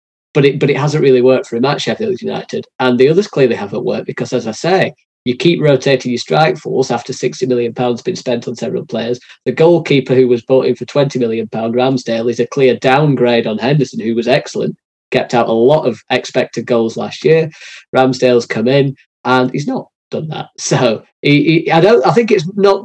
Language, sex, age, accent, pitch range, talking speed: English, male, 20-39, British, 120-140 Hz, 215 wpm